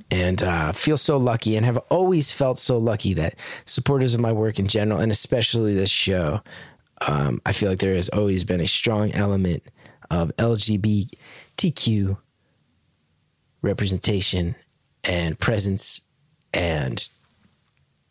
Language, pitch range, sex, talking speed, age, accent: English, 105-135 Hz, male, 130 wpm, 20-39, American